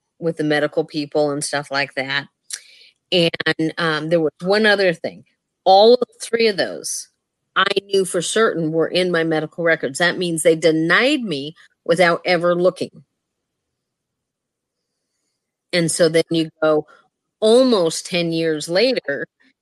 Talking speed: 140 wpm